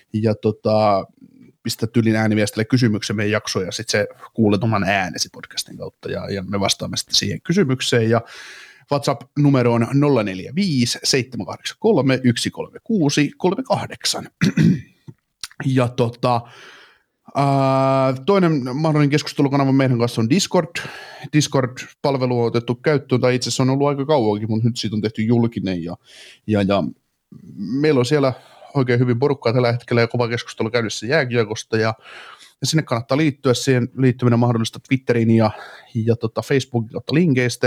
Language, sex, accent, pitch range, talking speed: Finnish, male, native, 110-130 Hz, 130 wpm